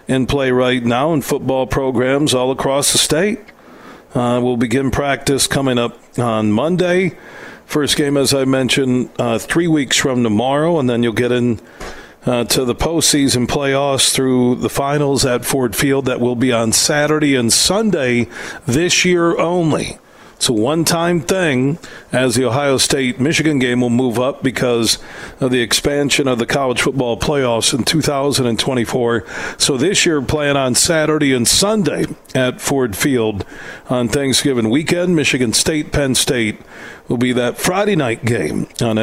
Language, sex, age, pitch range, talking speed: English, male, 50-69, 120-150 Hz, 155 wpm